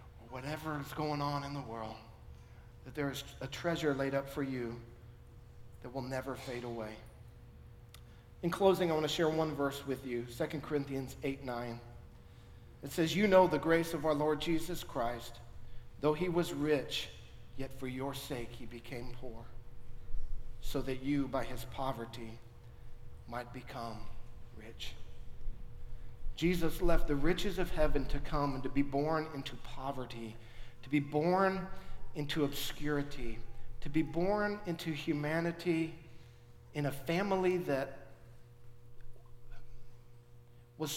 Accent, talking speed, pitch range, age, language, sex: American, 140 wpm, 120-150 Hz, 40-59, English, male